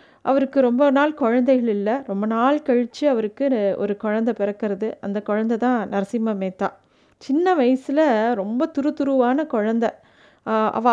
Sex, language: female, Tamil